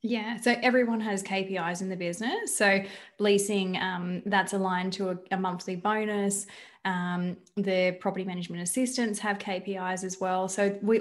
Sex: female